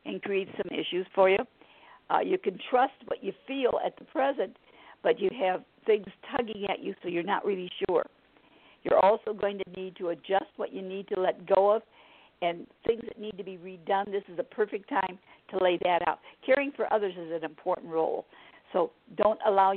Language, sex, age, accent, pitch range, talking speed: English, female, 60-79, American, 180-220 Hz, 205 wpm